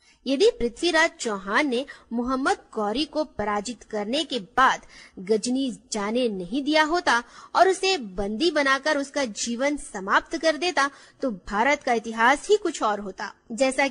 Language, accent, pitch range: Hindi, native, 210-285 Hz